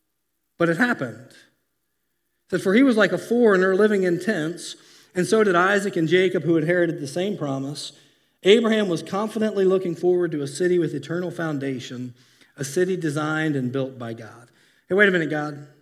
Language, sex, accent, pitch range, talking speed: English, male, American, 145-220 Hz, 180 wpm